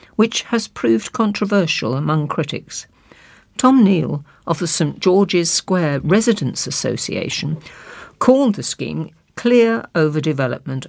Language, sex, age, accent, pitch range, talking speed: English, female, 50-69, British, 155-210 Hz, 110 wpm